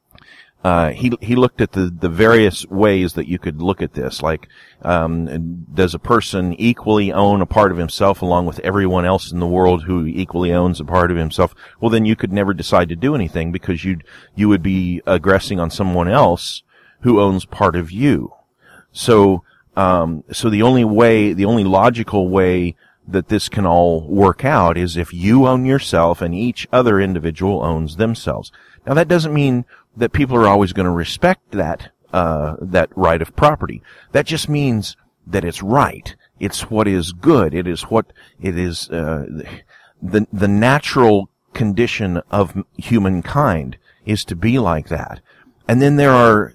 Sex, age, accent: male, 40-59, American